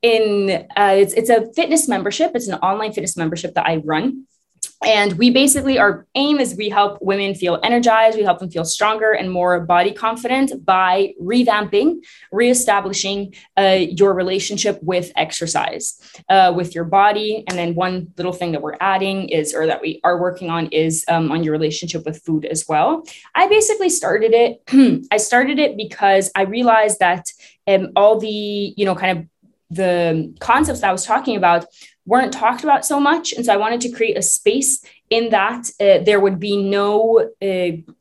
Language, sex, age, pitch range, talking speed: Spanish, female, 20-39, 180-235 Hz, 185 wpm